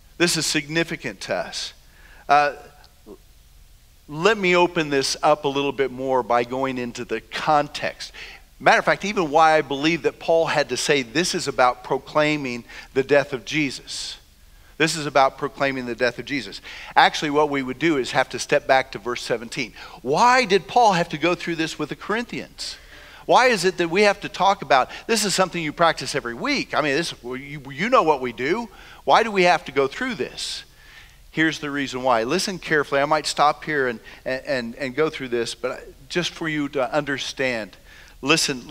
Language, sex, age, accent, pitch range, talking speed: English, male, 50-69, American, 130-165 Hz, 200 wpm